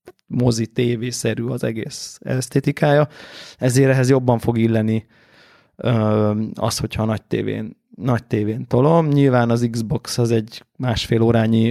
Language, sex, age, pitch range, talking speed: Hungarian, male, 20-39, 110-130 Hz, 125 wpm